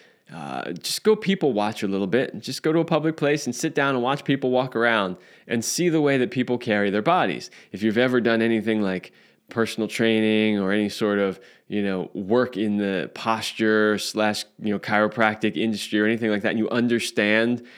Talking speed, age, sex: 210 wpm, 20-39, male